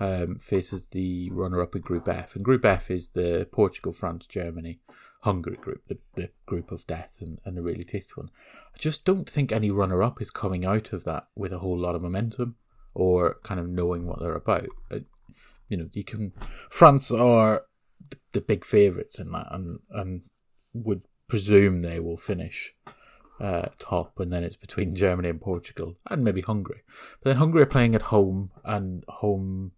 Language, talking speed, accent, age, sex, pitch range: English, 185 wpm, British, 30-49, male, 90-110 Hz